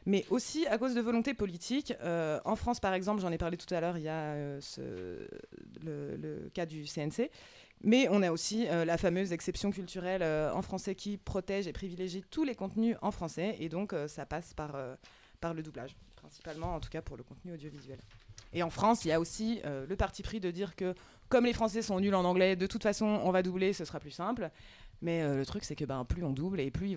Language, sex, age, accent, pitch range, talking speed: French, female, 20-39, French, 155-205 Hz, 250 wpm